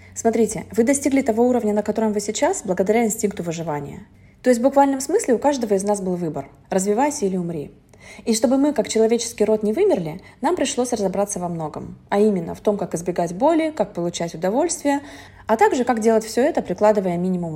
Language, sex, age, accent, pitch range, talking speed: Russian, female, 20-39, native, 180-235 Hz, 195 wpm